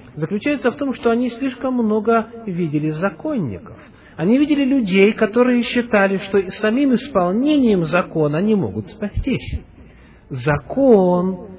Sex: male